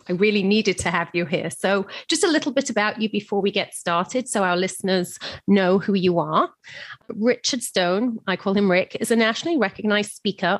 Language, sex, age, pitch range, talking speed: English, female, 30-49, 185-230 Hz, 205 wpm